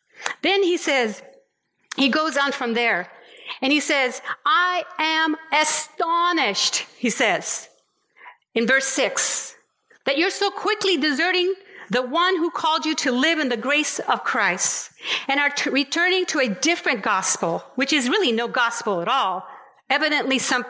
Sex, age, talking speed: female, 50-69, 150 wpm